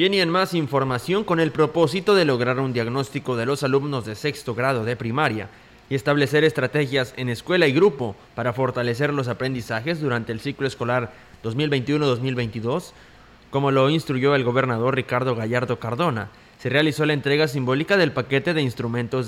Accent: Mexican